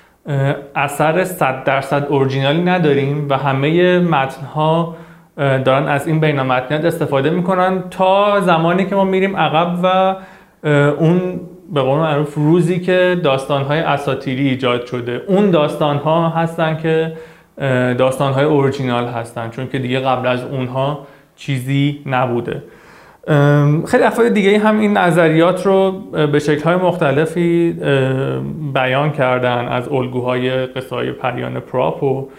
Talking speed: 125 wpm